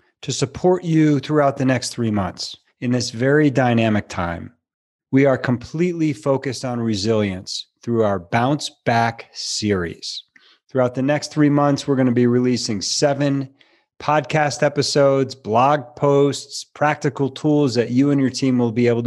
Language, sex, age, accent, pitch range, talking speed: English, male, 40-59, American, 115-145 Hz, 150 wpm